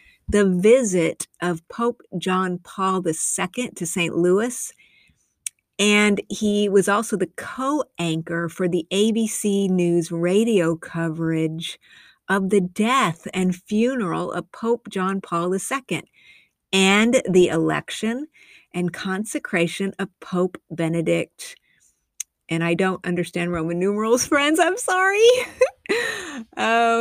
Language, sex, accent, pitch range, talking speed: English, female, American, 175-220 Hz, 110 wpm